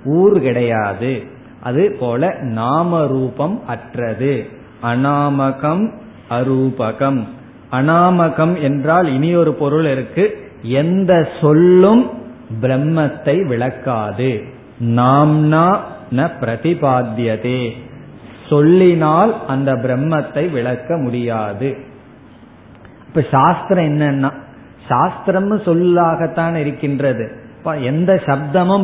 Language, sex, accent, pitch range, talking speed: Tamil, male, native, 125-165 Hz, 70 wpm